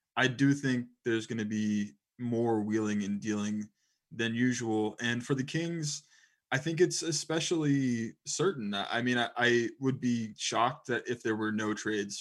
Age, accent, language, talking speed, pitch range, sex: 20-39, American, English, 170 wpm, 110-130 Hz, male